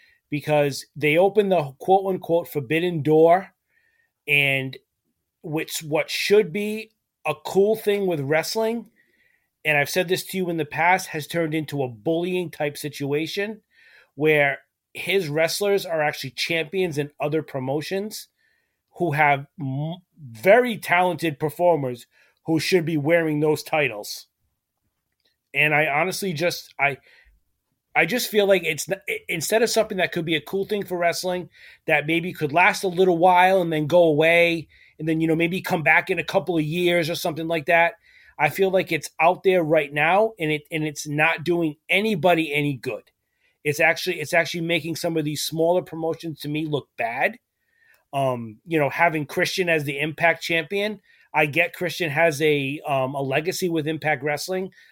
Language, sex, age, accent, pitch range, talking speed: English, male, 30-49, American, 150-185 Hz, 165 wpm